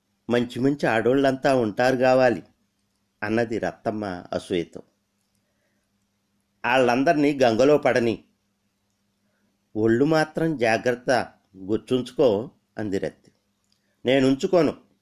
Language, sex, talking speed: Telugu, male, 70 wpm